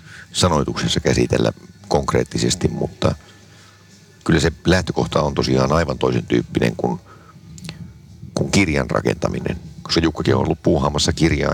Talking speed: 115 wpm